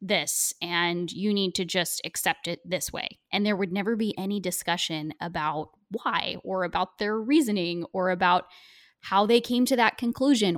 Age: 10-29